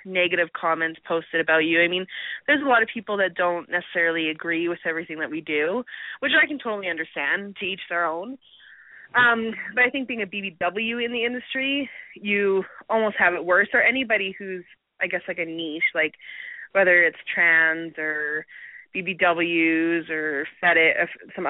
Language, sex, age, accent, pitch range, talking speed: English, female, 20-39, American, 160-195 Hz, 170 wpm